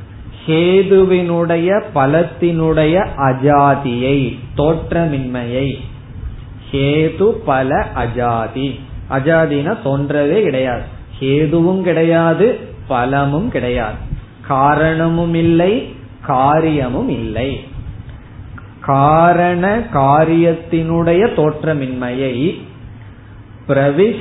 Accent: native